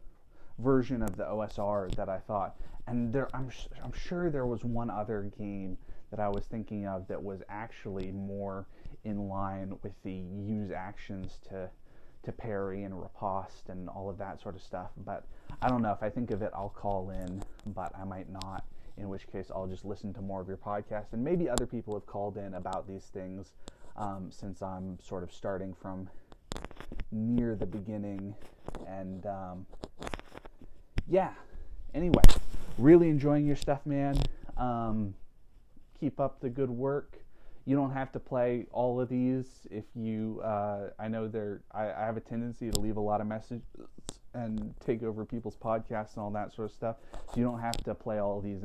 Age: 30-49